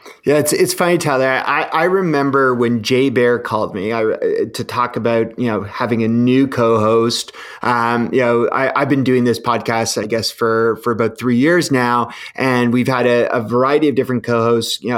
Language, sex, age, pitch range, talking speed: English, male, 30-49, 120-160 Hz, 200 wpm